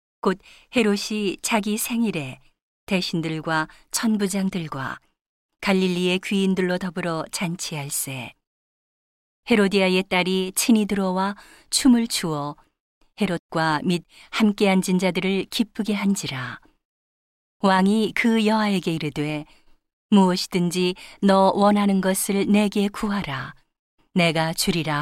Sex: female